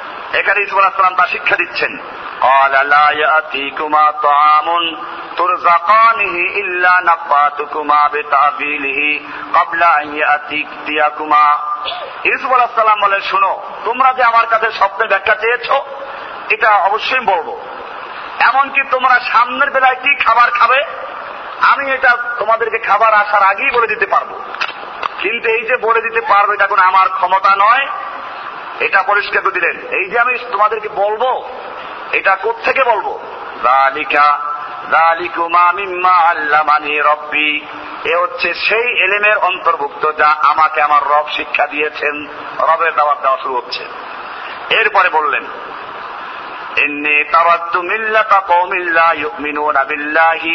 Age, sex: 50-69, male